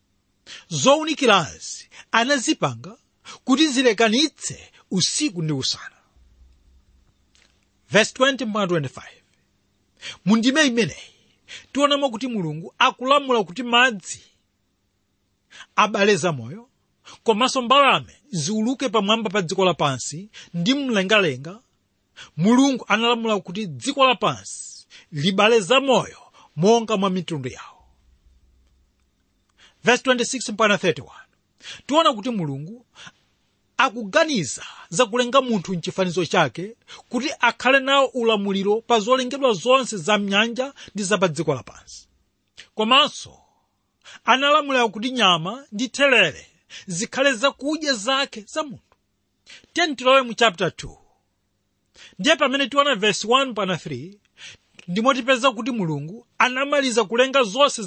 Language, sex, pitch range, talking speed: English, male, 155-260 Hz, 100 wpm